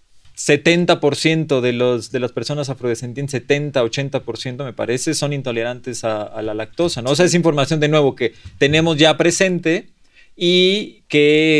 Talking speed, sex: 145 wpm, male